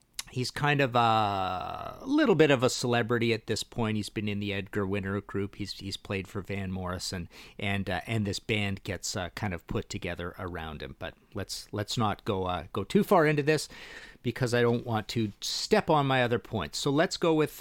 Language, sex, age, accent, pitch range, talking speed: English, male, 40-59, American, 100-130 Hz, 220 wpm